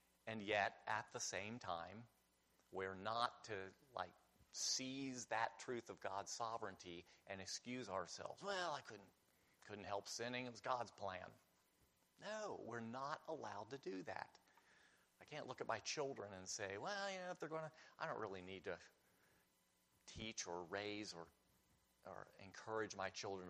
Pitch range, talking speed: 95-125 Hz, 165 wpm